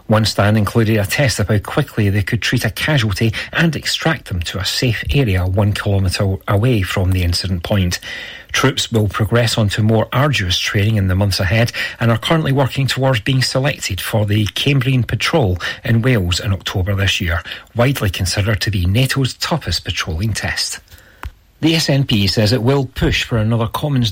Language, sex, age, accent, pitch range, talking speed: English, male, 40-59, British, 100-130 Hz, 180 wpm